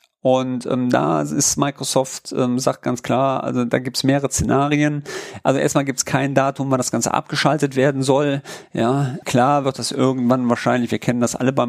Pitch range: 115-135 Hz